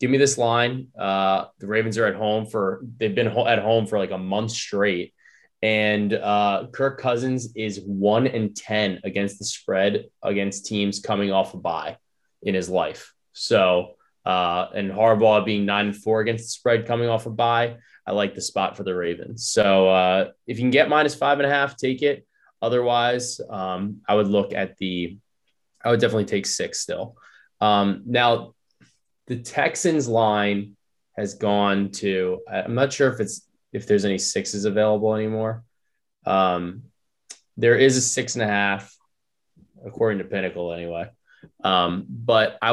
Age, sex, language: 20-39, male, English